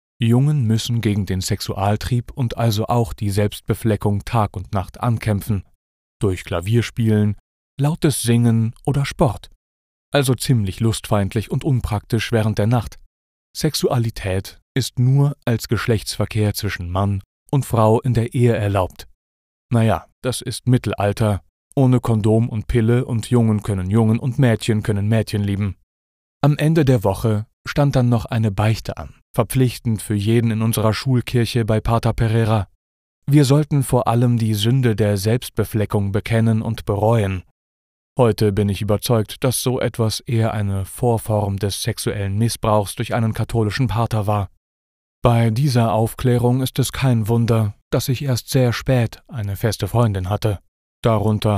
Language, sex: German, male